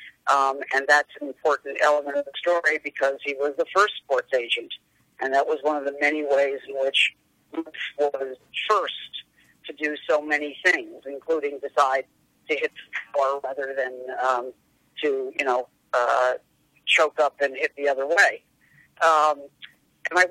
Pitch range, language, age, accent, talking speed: 140-170 Hz, English, 50-69, American, 170 wpm